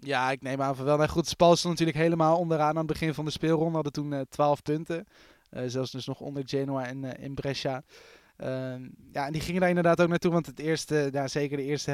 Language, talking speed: Dutch, 250 wpm